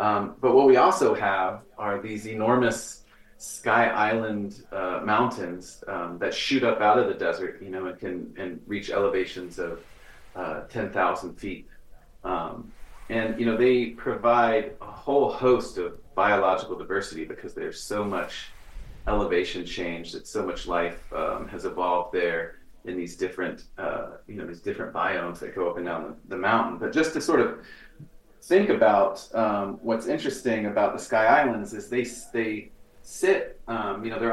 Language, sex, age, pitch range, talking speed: English, male, 30-49, 90-125 Hz, 170 wpm